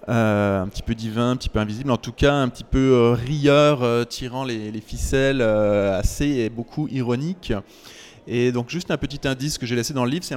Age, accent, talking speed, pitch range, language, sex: 20-39, French, 230 wpm, 115-135 Hz, French, male